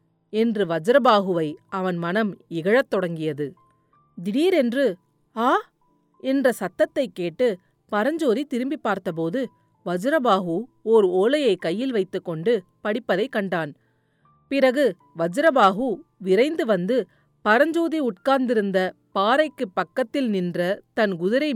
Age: 40-59